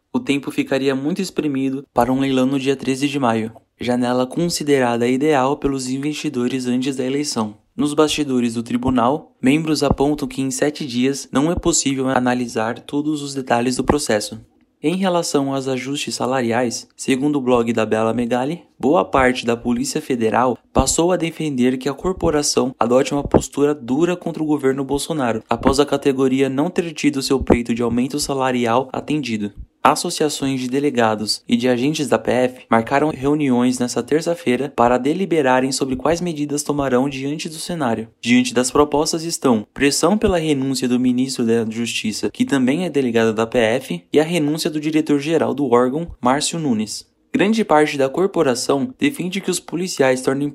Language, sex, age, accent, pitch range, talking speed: Portuguese, male, 20-39, Brazilian, 125-155 Hz, 165 wpm